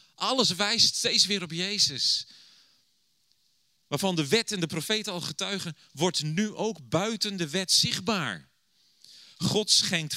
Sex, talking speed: male, 135 wpm